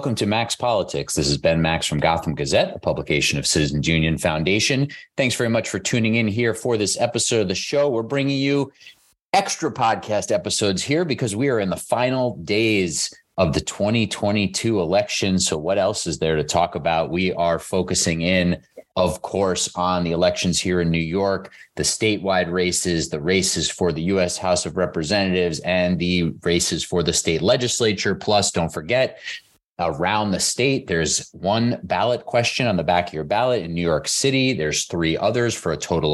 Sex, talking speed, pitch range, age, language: male, 190 wpm, 80-110 Hz, 30-49, English